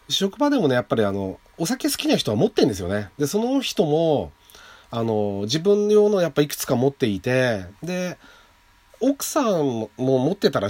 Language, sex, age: Japanese, male, 40-59